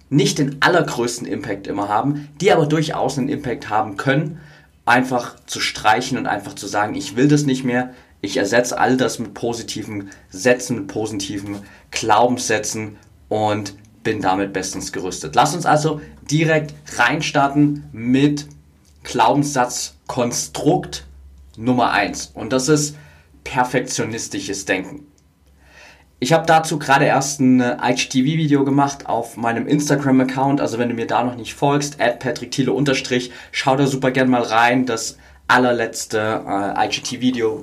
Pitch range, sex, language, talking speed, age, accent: 110-145 Hz, male, German, 135 wpm, 30-49, German